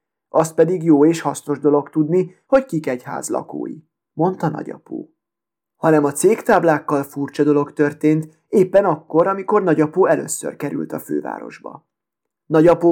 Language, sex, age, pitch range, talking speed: Hungarian, male, 20-39, 145-170 Hz, 130 wpm